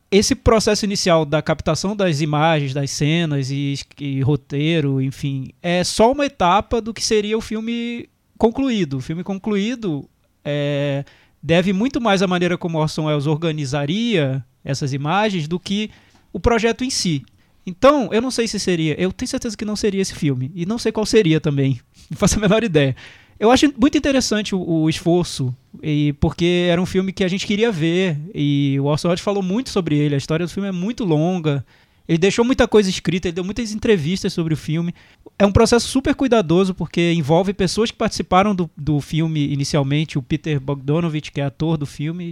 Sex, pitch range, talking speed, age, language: male, 145-200 Hz, 190 wpm, 20-39, Portuguese